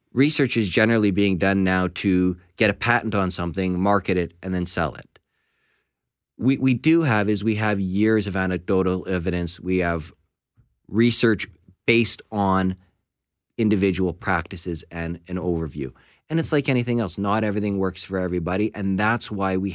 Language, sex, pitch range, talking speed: English, male, 95-115 Hz, 160 wpm